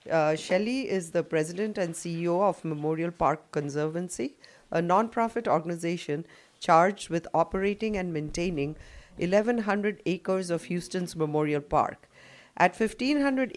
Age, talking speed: 40-59, 120 wpm